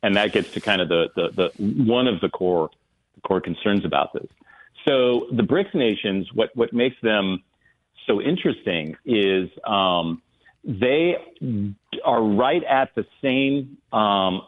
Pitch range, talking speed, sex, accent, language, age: 90-125 Hz, 150 wpm, male, American, English, 40-59